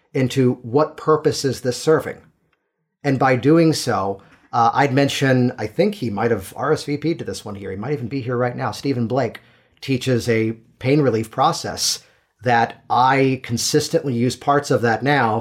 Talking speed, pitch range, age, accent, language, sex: 175 wpm, 115-155 Hz, 40-59, American, English, male